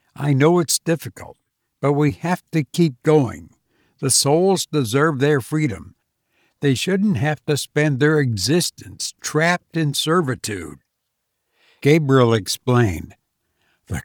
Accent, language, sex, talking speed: American, English, male, 120 wpm